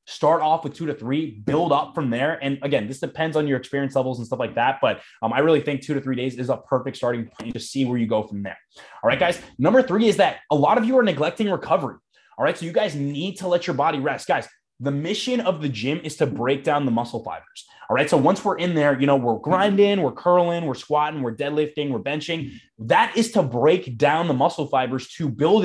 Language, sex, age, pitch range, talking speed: English, male, 20-39, 130-155 Hz, 255 wpm